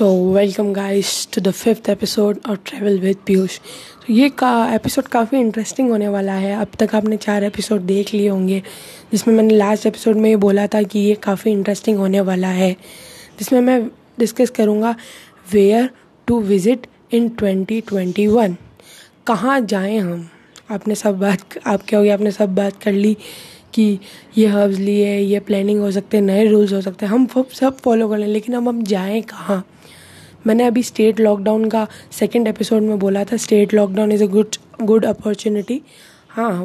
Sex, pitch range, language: female, 205-230 Hz, Hindi